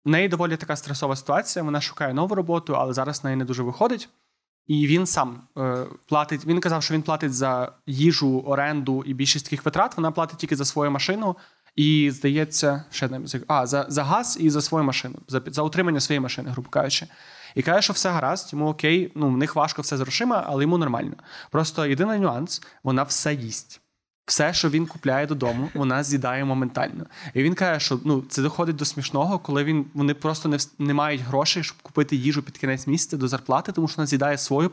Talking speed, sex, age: 205 wpm, male, 20-39